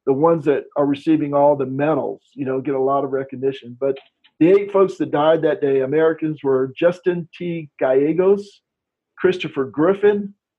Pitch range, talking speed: 135-175 Hz, 170 wpm